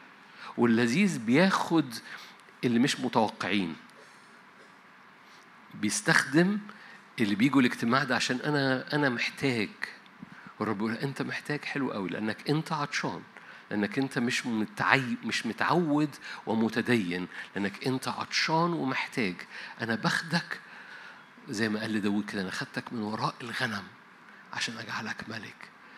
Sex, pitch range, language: male, 115-145 Hz, Arabic